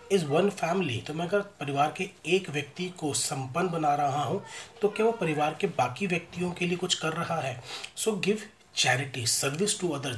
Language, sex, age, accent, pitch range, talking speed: Hindi, male, 30-49, native, 145-180 Hz, 200 wpm